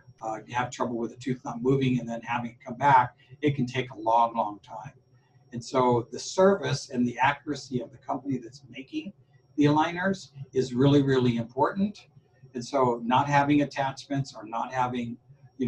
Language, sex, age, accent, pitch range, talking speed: English, male, 60-79, American, 120-140 Hz, 190 wpm